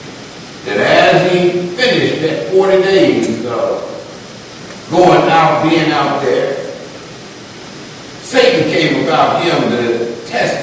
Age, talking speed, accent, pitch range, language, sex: 60-79, 105 wpm, American, 165-220 Hz, English, male